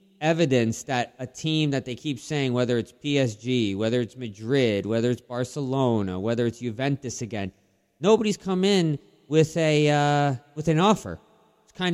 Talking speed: 160 wpm